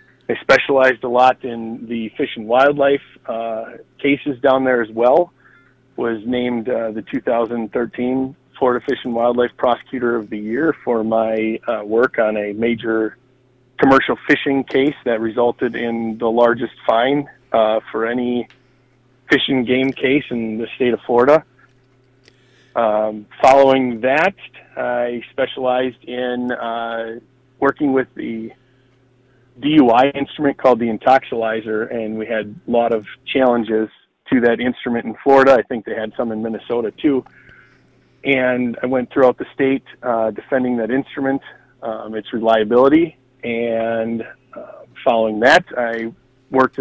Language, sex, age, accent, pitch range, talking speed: English, male, 30-49, American, 115-130 Hz, 140 wpm